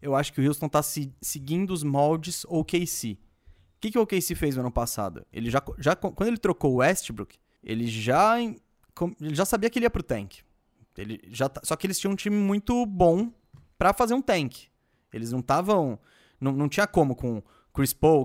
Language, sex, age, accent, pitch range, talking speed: Portuguese, male, 20-39, Brazilian, 125-175 Hz, 205 wpm